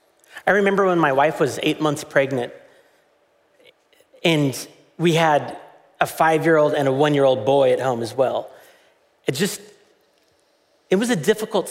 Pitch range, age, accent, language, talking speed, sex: 150-215 Hz, 40-59, American, English, 145 wpm, male